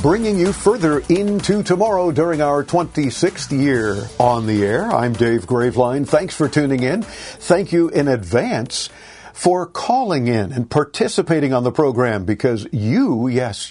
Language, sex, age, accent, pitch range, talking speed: English, male, 50-69, American, 120-150 Hz, 150 wpm